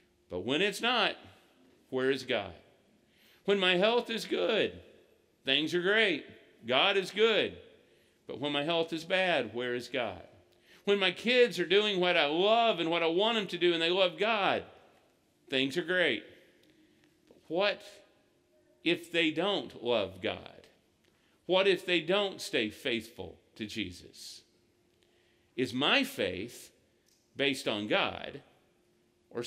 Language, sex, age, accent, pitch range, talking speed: English, male, 50-69, American, 135-200 Hz, 145 wpm